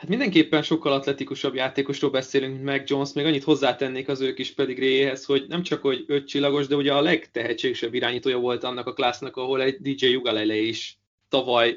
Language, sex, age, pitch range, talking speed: Hungarian, male, 20-39, 120-145 Hz, 185 wpm